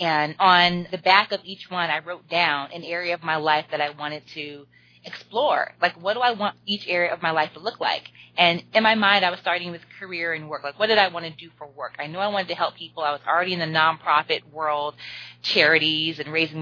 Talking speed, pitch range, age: 255 wpm, 155-195 Hz, 20-39